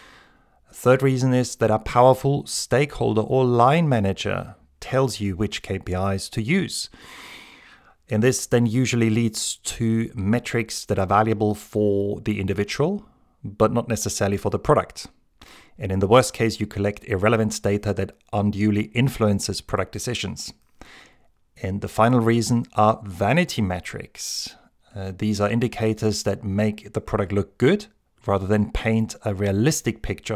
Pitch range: 100-120 Hz